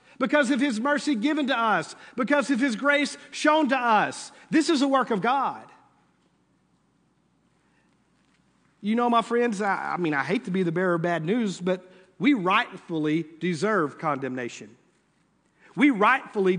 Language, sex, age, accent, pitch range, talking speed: English, male, 50-69, American, 150-215 Hz, 155 wpm